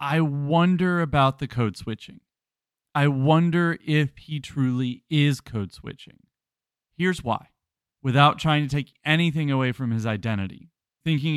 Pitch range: 125-160 Hz